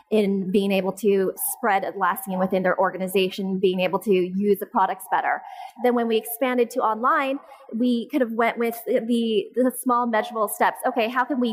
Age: 30-49